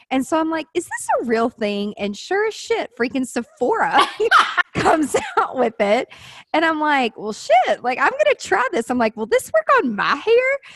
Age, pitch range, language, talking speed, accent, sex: 20-39, 210-300 Hz, English, 210 wpm, American, female